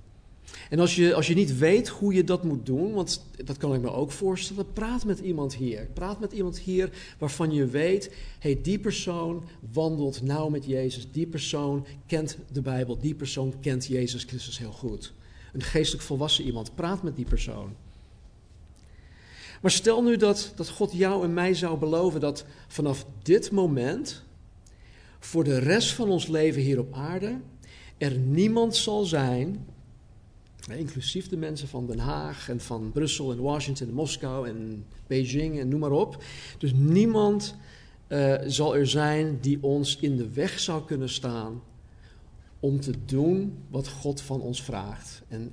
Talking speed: 165 wpm